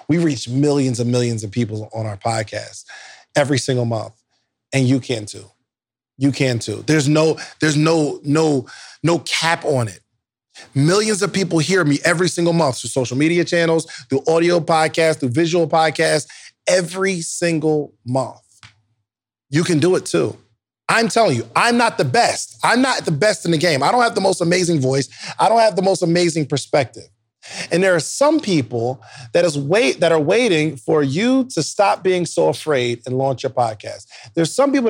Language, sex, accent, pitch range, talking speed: English, male, American, 125-190 Hz, 185 wpm